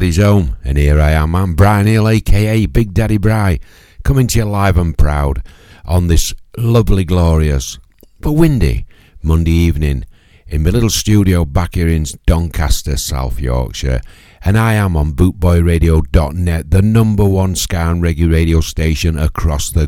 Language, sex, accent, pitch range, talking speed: English, male, British, 75-95 Hz, 155 wpm